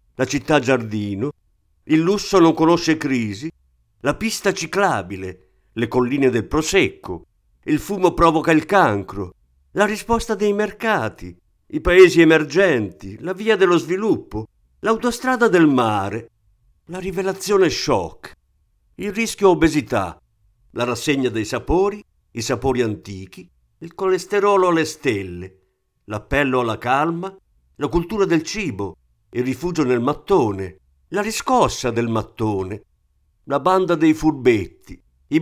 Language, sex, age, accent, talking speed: Italian, male, 50-69, native, 120 wpm